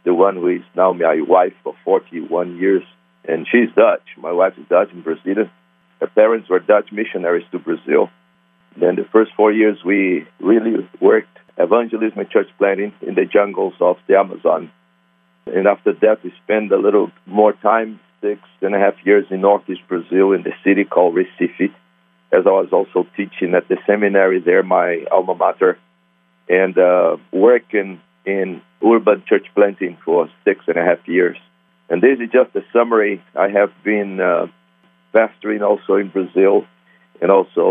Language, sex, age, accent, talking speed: English, male, 50-69, Brazilian, 170 wpm